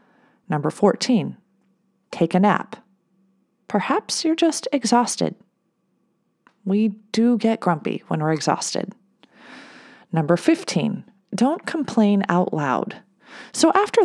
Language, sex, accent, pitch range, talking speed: English, female, American, 185-250 Hz, 105 wpm